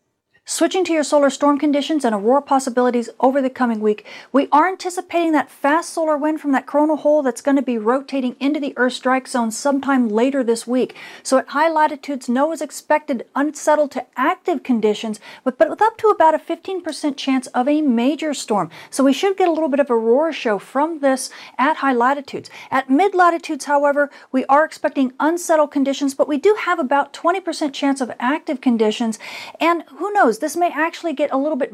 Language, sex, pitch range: English, female, 250-305 Hz